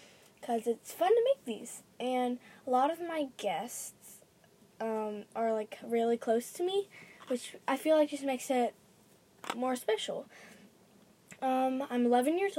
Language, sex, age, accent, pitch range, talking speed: English, female, 10-29, American, 205-255 Hz, 155 wpm